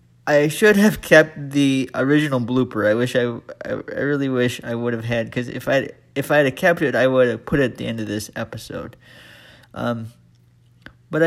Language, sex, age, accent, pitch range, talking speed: English, male, 20-39, American, 125-205 Hz, 195 wpm